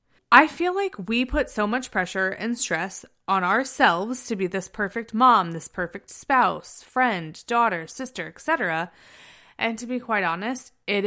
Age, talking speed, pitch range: 20-39, 165 wpm, 180-250 Hz